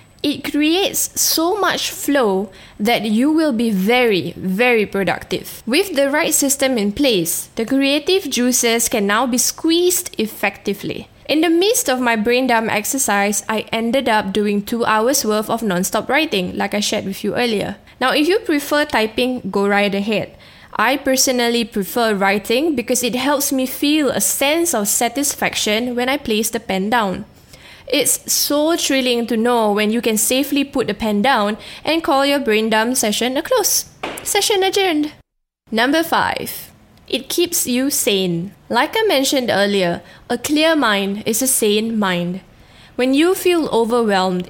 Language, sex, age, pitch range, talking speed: English, female, 10-29, 210-280 Hz, 165 wpm